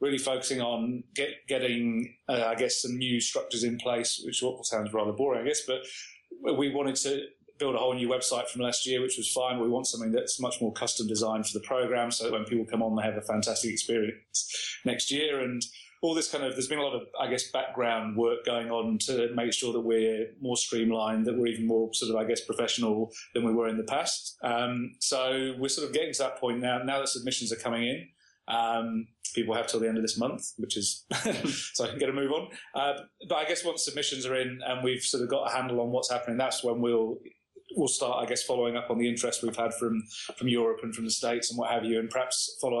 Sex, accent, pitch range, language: male, British, 115-130 Hz, English